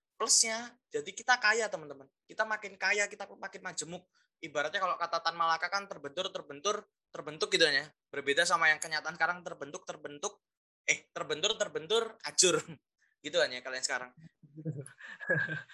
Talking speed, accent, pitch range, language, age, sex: 130 wpm, native, 145-215 Hz, Indonesian, 20-39, male